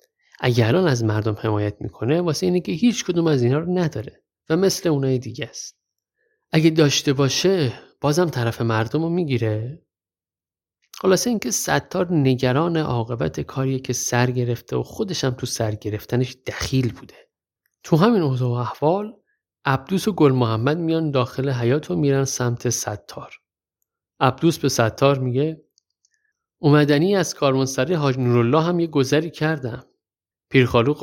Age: 50-69